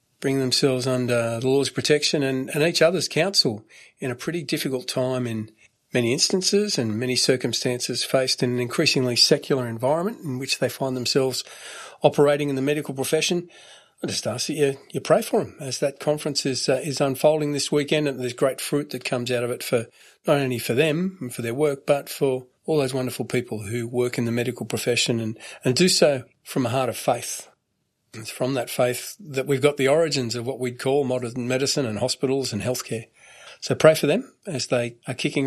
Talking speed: 205 wpm